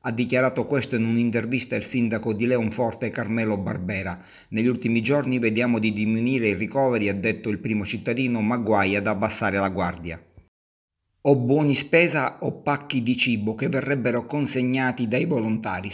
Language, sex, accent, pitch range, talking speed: Italian, male, native, 115-130 Hz, 160 wpm